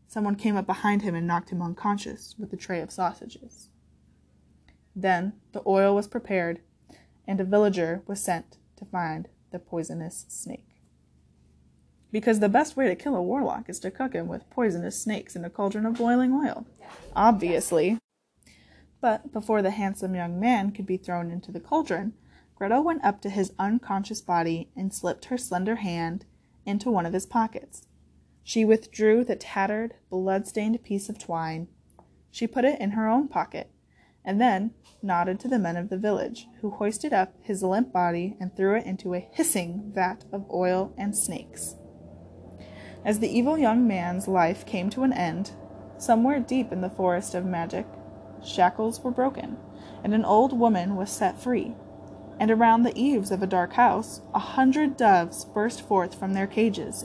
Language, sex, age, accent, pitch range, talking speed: English, female, 10-29, American, 180-225 Hz, 170 wpm